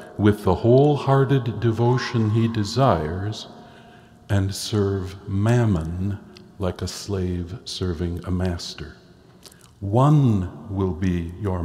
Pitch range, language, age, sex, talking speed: 100-125 Hz, English, 60-79, male, 100 wpm